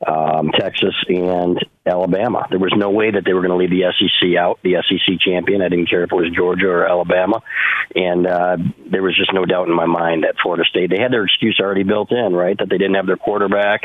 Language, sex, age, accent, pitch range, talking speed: English, male, 40-59, American, 95-110 Hz, 245 wpm